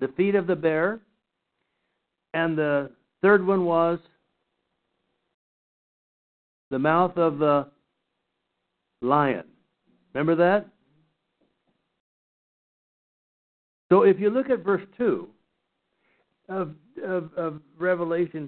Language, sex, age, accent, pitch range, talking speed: English, male, 60-79, American, 130-180 Hz, 90 wpm